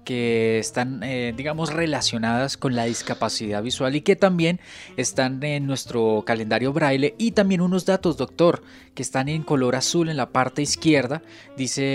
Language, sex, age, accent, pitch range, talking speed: Spanish, male, 20-39, Colombian, 120-150 Hz, 160 wpm